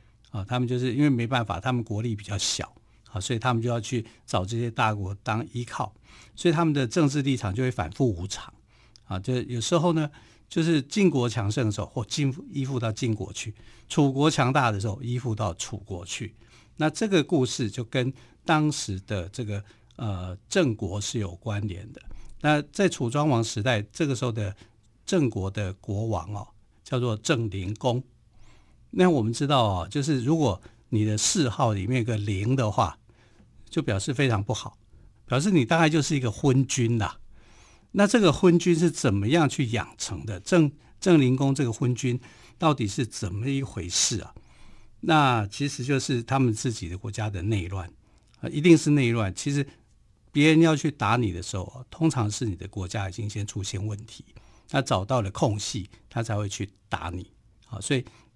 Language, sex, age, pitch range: Chinese, male, 60-79, 105-135 Hz